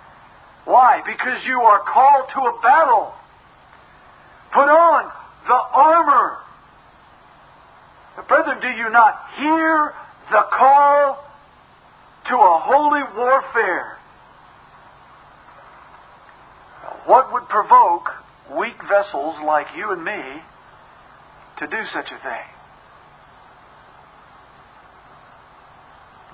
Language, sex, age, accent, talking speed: English, male, 50-69, American, 85 wpm